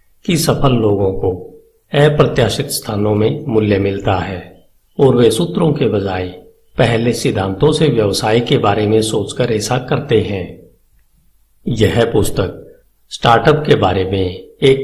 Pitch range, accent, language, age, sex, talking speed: 95-130 Hz, native, Hindi, 50-69, male, 140 wpm